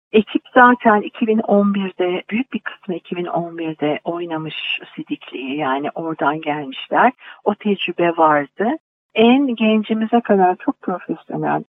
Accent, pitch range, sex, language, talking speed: native, 180-235 Hz, female, Turkish, 100 wpm